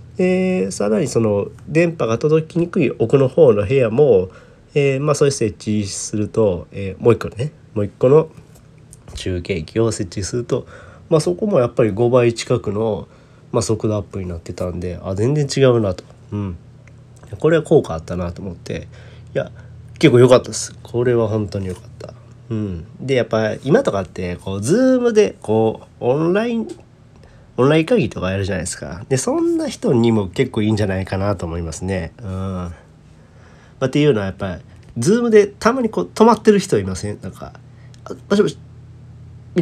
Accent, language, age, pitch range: native, Japanese, 40-59, 105-140 Hz